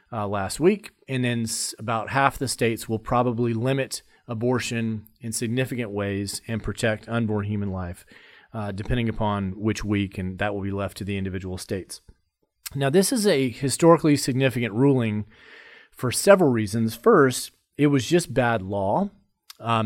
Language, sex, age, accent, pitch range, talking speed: English, male, 40-59, American, 105-135 Hz, 155 wpm